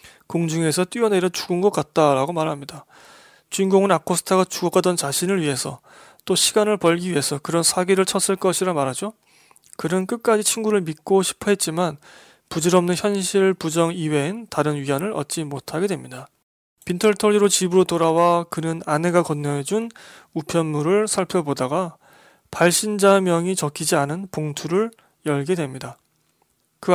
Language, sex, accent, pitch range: Korean, male, native, 155-205 Hz